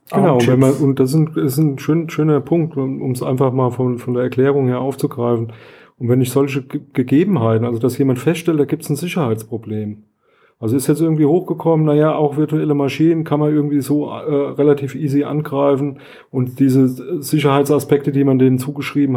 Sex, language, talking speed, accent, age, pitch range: male, German, 195 wpm, German, 30-49, 125-150 Hz